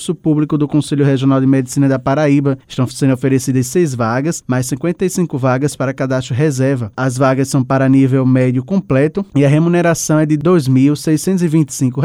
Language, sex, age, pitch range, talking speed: Portuguese, male, 20-39, 130-150 Hz, 160 wpm